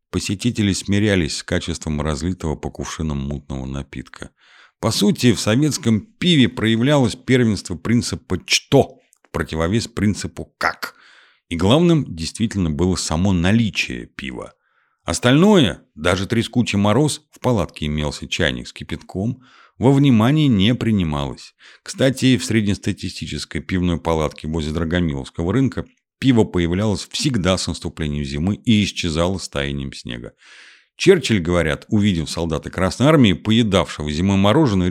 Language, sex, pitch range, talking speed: Russian, male, 85-115 Hz, 120 wpm